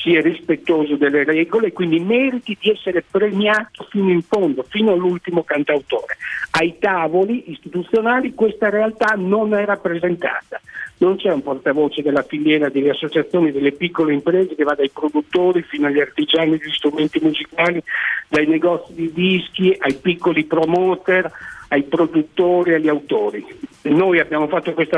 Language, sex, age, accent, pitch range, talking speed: Italian, male, 50-69, native, 155-200 Hz, 145 wpm